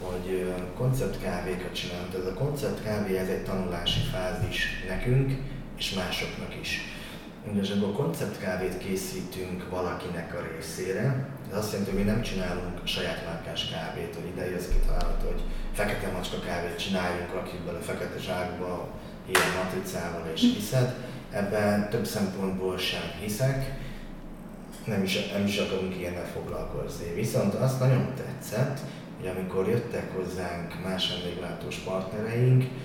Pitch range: 90-115 Hz